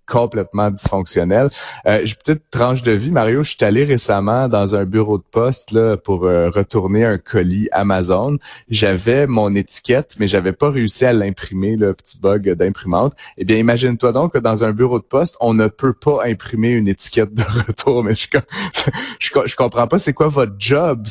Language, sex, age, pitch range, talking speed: French, male, 30-49, 100-125 Hz, 190 wpm